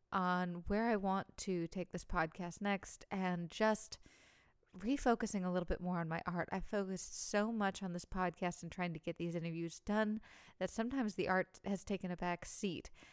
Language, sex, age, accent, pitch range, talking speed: English, female, 20-39, American, 175-205 Hz, 190 wpm